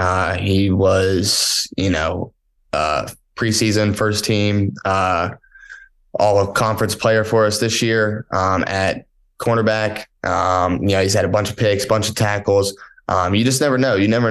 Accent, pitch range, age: American, 100-110 Hz, 20-39